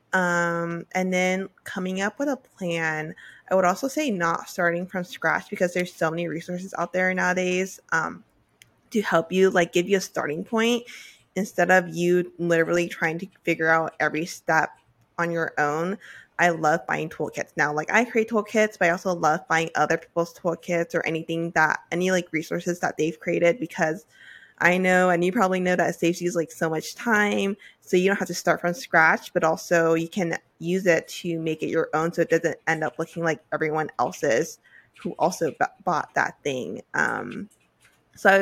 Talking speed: 190 wpm